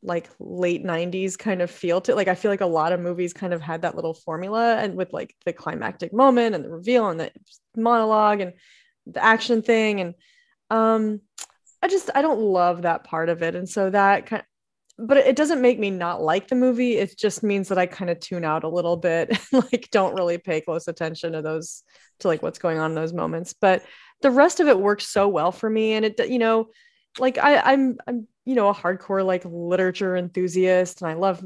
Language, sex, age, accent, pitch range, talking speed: English, female, 20-39, American, 175-225 Hz, 225 wpm